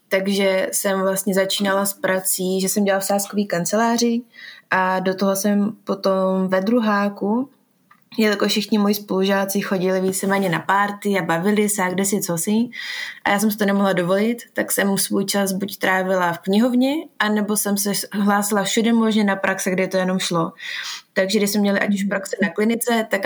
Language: Czech